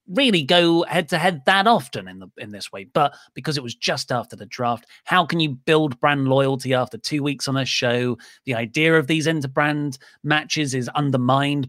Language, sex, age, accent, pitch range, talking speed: English, male, 30-49, British, 125-160 Hz, 205 wpm